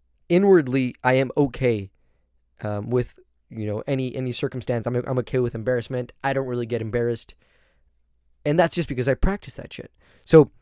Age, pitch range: 20-39, 110-150 Hz